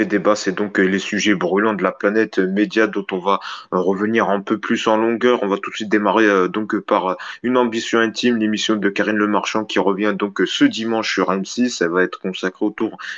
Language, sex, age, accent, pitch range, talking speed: French, male, 20-39, French, 100-110 Hz, 215 wpm